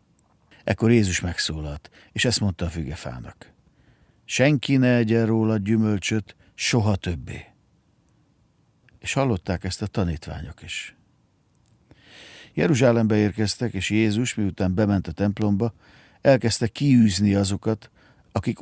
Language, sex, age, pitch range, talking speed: Hungarian, male, 50-69, 95-115 Hz, 105 wpm